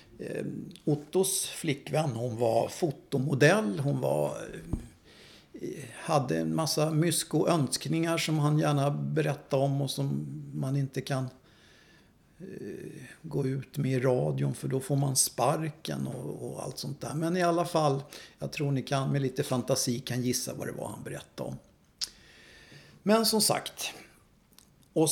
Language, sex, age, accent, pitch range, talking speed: Swedish, male, 50-69, native, 130-170 Hz, 145 wpm